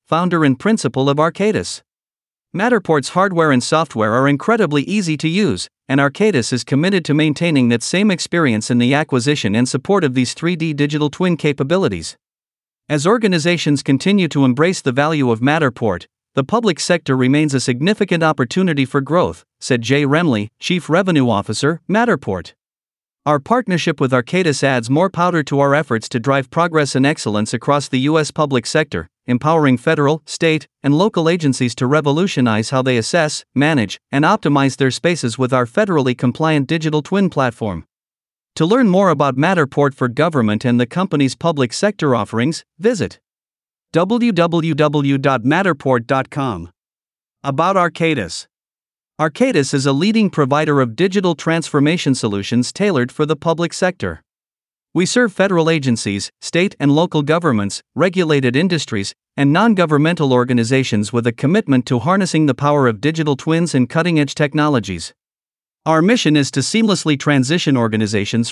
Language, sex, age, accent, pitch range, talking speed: English, male, 50-69, American, 130-170 Hz, 145 wpm